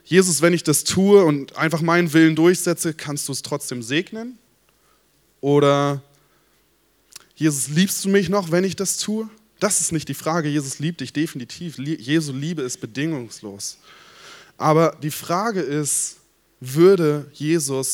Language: German